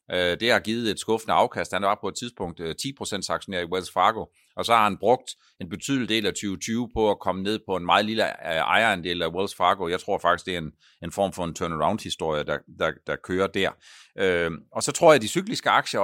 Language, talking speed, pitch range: Danish, 225 wpm, 95-125 Hz